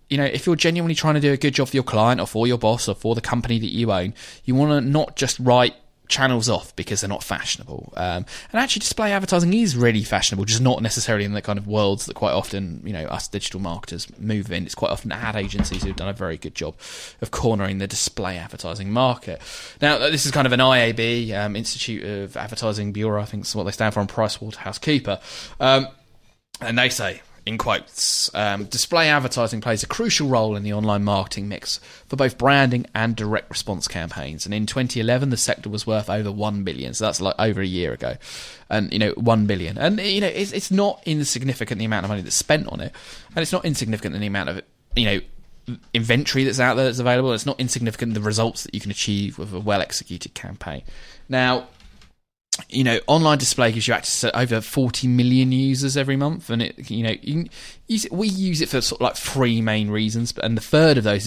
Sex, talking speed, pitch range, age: male, 225 wpm, 105-130 Hz, 20-39